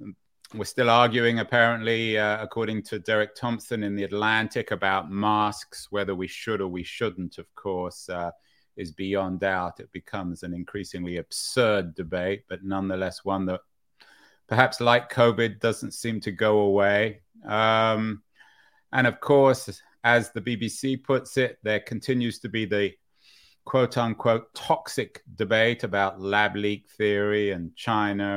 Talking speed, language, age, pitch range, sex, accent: 140 wpm, English, 30-49, 100-120 Hz, male, British